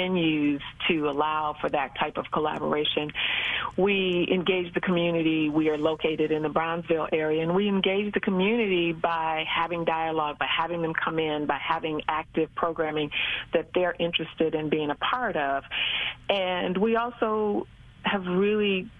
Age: 40-59